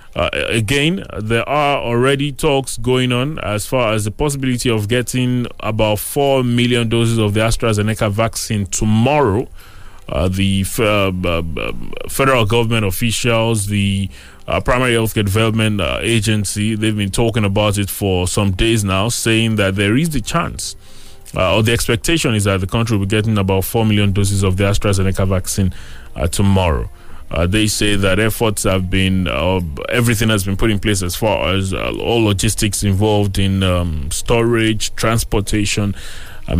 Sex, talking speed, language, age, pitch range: male, 165 wpm, English, 20-39, 95-115 Hz